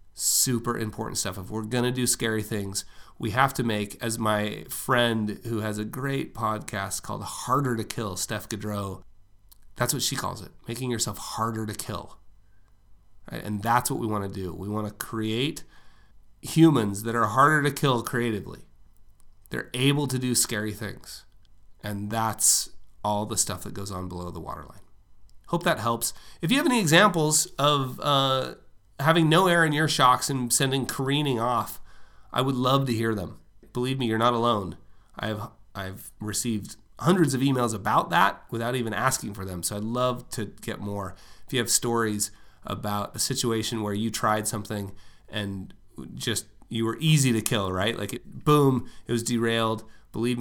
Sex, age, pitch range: male, 30-49, 100-125 Hz